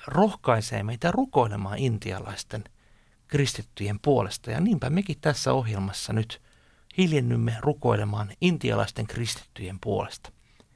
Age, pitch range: 60-79, 110-145 Hz